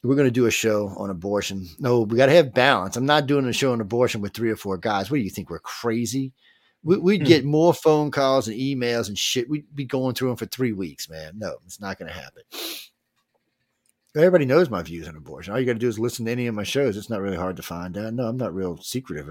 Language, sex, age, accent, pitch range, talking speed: English, male, 40-59, American, 95-130 Hz, 270 wpm